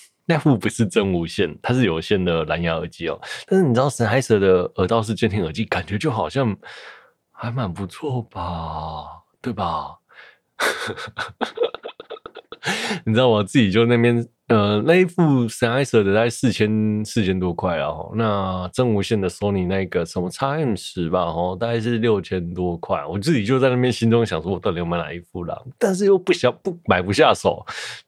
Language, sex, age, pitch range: Chinese, male, 20-39, 90-130 Hz